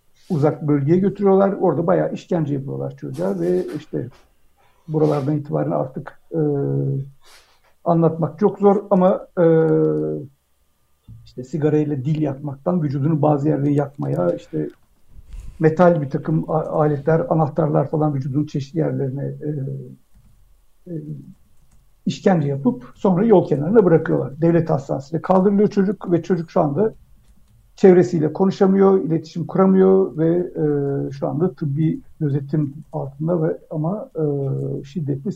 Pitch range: 145-175 Hz